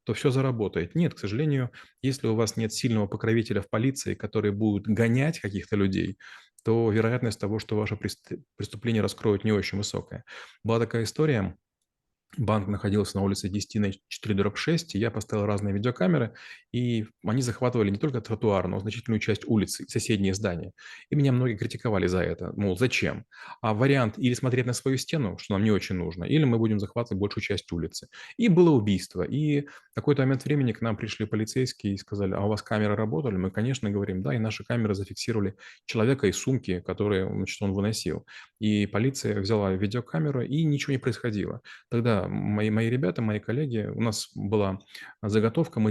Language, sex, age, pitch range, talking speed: Russian, male, 20-39, 100-120 Hz, 180 wpm